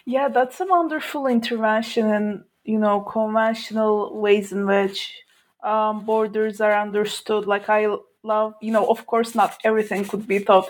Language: English